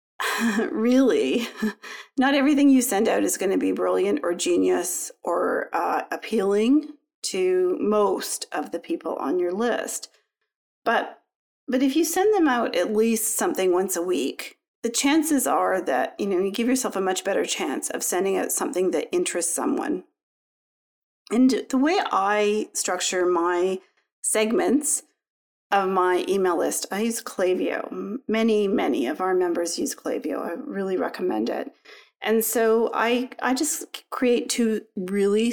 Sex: female